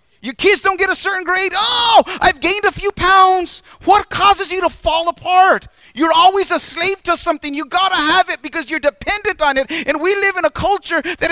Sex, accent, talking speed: male, American, 225 wpm